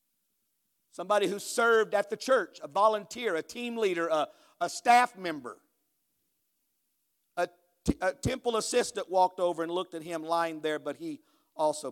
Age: 50-69